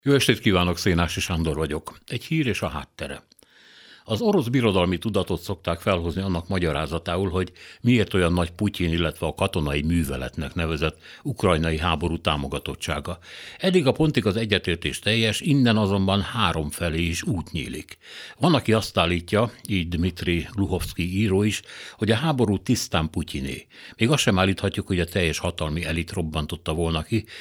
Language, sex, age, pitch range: Hungarian, male, 60-79, 85-110 Hz